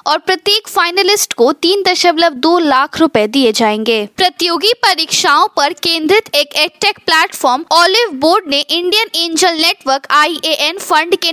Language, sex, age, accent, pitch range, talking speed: Hindi, female, 20-39, native, 280-385 Hz, 145 wpm